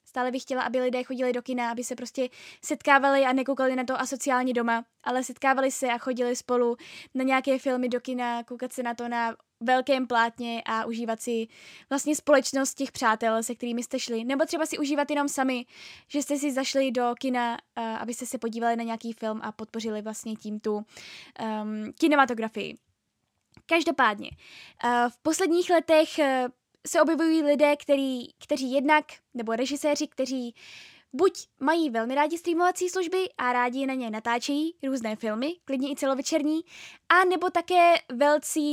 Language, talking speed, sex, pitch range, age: Czech, 165 wpm, female, 240-290 Hz, 10-29